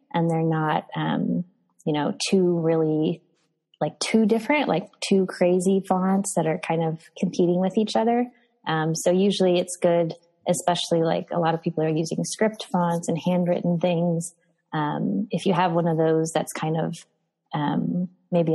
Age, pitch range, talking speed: 20-39, 160-185 Hz, 170 wpm